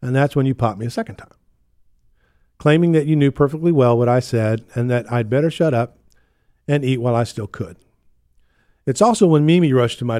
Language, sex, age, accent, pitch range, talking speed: English, male, 50-69, American, 110-140 Hz, 220 wpm